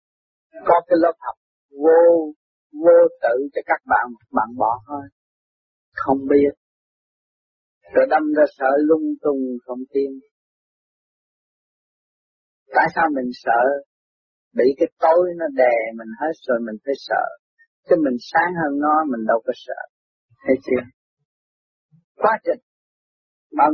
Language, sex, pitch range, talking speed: Vietnamese, male, 125-175 Hz, 135 wpm